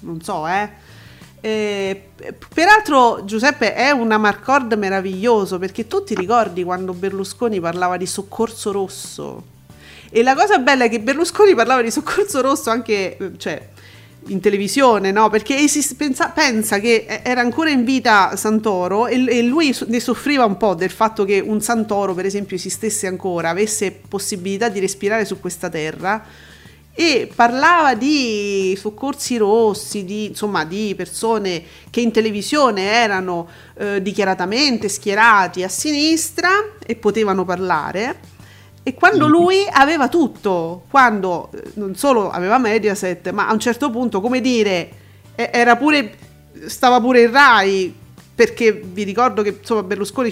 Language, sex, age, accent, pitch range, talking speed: Italian, female, 40-59, native, 190-245 Hz, 140 wpm